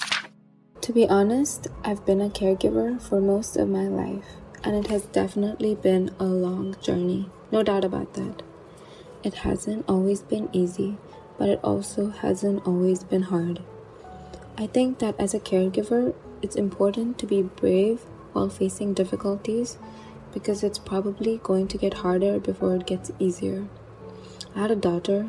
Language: English